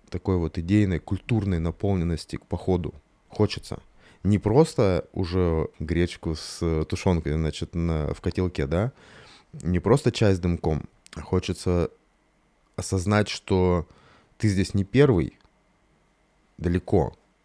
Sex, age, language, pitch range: male, 20-39, Russian, 85-105 Hz